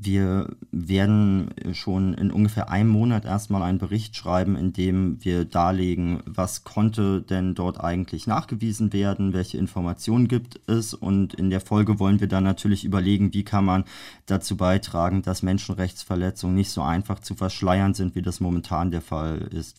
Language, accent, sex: German, German, male